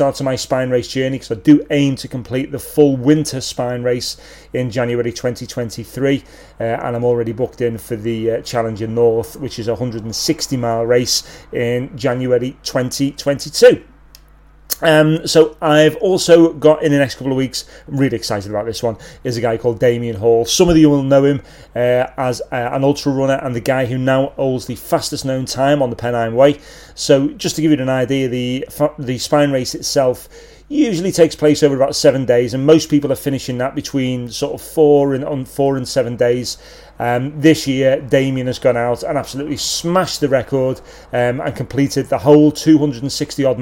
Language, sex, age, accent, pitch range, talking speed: English, male, 30-49, British, 120-150 Hz, 190 wpm